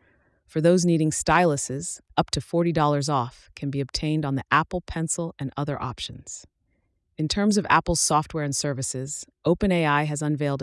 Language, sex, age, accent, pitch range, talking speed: English, female, 30-49, American, 135-165 Hz, 160 wpm